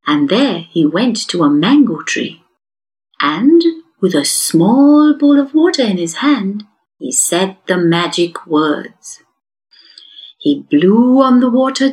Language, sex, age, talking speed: English, female, 50-69, 140 wpm